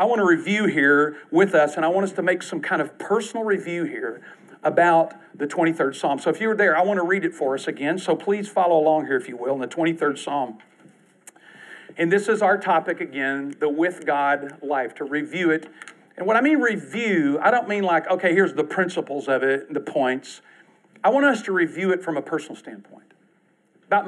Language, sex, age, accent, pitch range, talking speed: English, male, 50-69, American, 145-195 Hz, 220 wpm